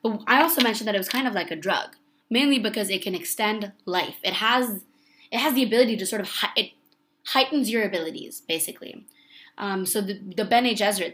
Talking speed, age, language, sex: 210 wpm, 20-39, English, female